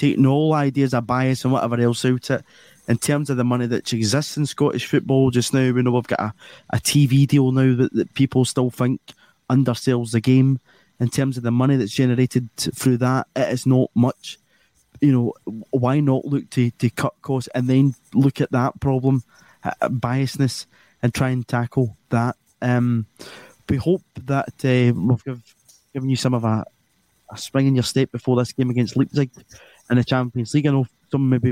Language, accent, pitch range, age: English, British, 115-135 Hz, 20-39